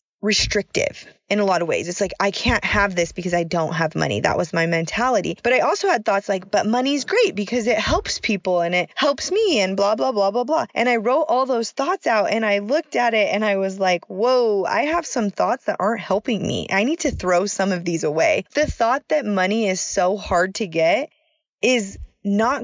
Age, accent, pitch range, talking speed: 20-39, American, 180-240 Hz, 235 wpm